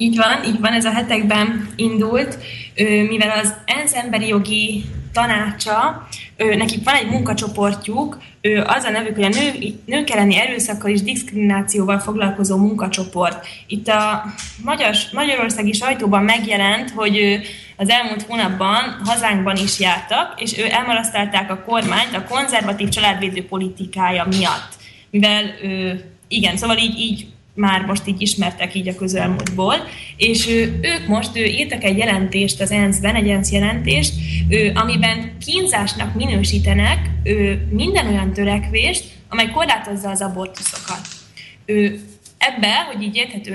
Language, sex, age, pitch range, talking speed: Slovak, female, 20-39, 190-225 Hz, 125 wpm